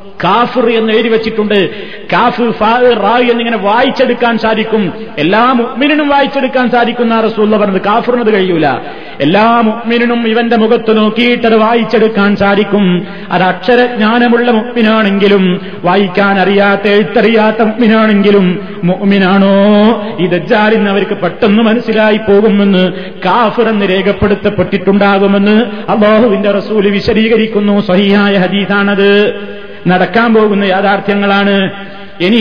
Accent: native